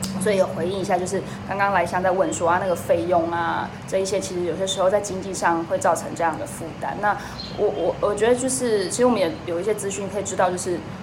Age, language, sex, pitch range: 10-29, Chinese, female, 175-210 Hz